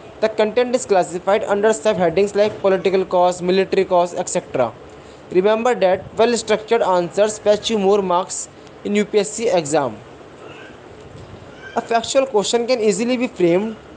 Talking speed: 135 wpm